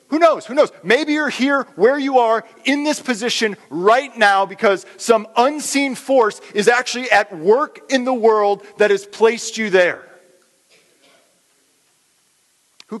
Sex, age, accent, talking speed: male, 40-59, American, 150 wpm